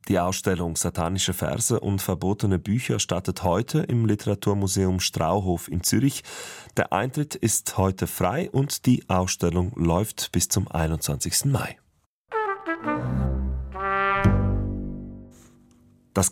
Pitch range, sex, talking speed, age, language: 90-115 Hz, male, 105 wpm, 30-49, German